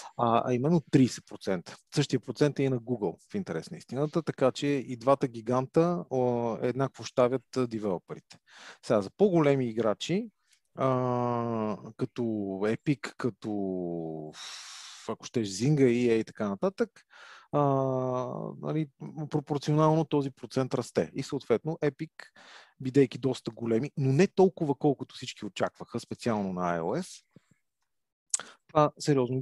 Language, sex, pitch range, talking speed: Bulgarian, male, 115-155 Hz, 115 wpm